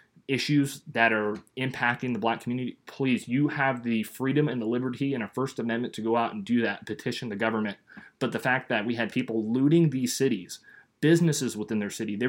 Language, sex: English, male